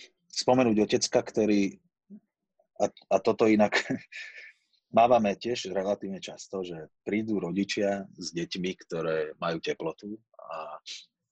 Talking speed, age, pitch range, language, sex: 105 wpm, 30-49, 90-110 Hz, Slovak, male